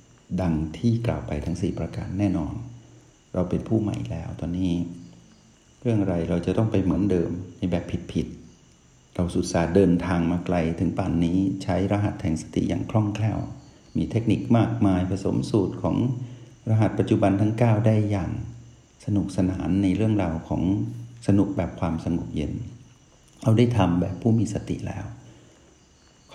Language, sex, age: Thai, male, 60-79